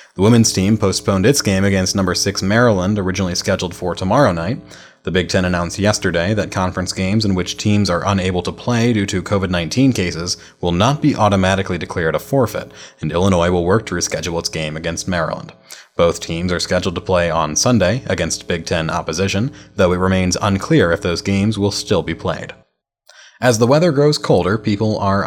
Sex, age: male, 30-49